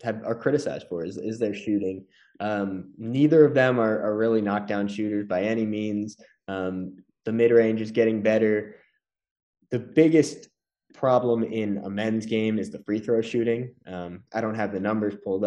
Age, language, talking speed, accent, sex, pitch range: 20-39, English, 180 wpm, American, male, 105-120 Hz